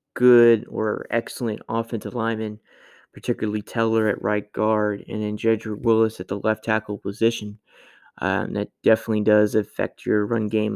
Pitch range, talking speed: 105-115 Hz, 150 wpm